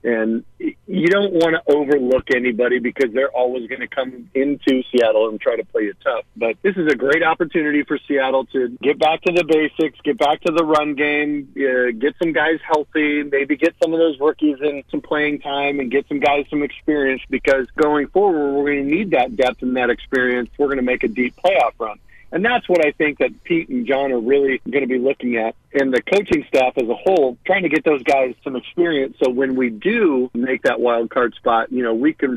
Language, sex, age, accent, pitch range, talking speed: English, male, 40-59, American, 125-150 Hz, 230 wpm